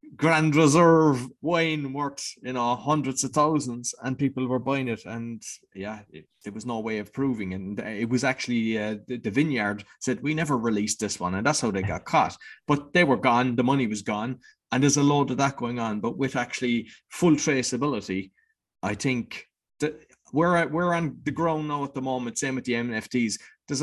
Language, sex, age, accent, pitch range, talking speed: English, male, 20-39, Irish, 115-140 Hz, 210 wpm